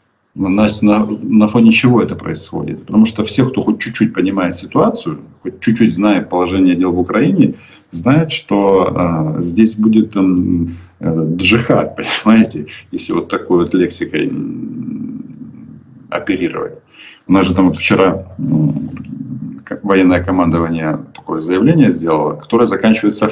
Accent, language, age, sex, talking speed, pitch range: native, Russian, 40-59, male, 135 wpm, 90-130 Hz